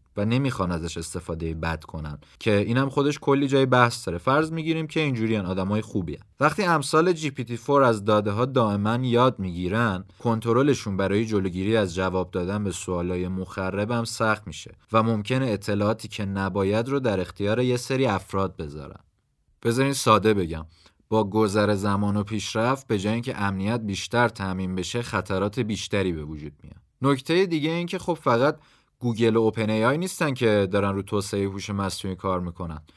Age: 30-49